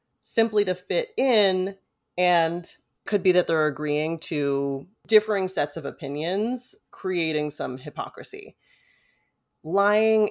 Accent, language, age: American, English, 30-49